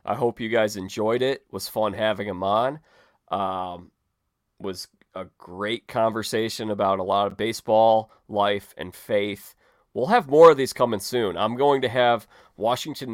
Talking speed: 175 wpm